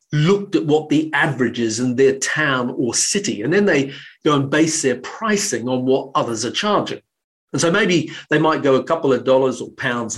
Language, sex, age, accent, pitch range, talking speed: English, male, 40-59, British, 135-190 Hz, 210 wpm